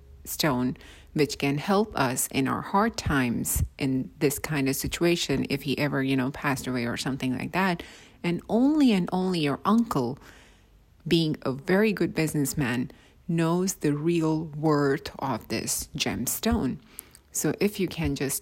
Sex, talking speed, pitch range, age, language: female, 155 wpm, 135-175 Hz, 30-49, English